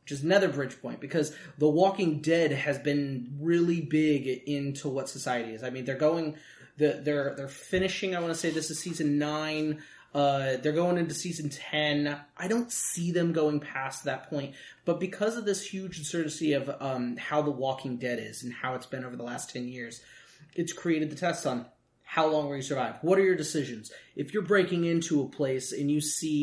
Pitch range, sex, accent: 130-165 Hz, male, American